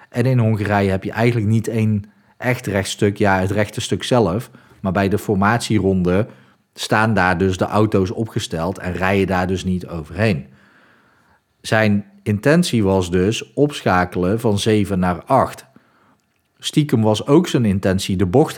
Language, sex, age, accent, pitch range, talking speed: Dutch, male, 40-59, Dutch, 95-110 Hz, 150 wpm